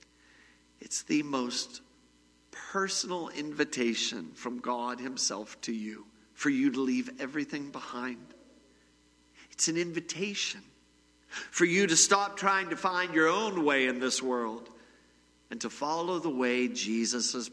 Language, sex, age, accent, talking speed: English, male, 50-69, American, 135 wpm